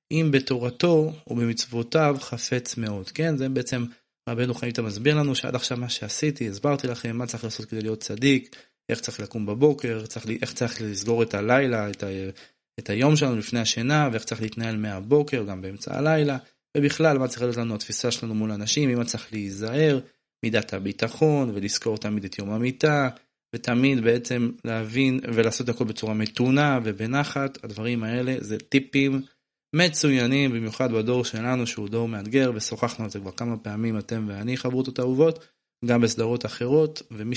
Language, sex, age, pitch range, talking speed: Hebrew, male, 20-39, 110-135 Hz, 155 wpm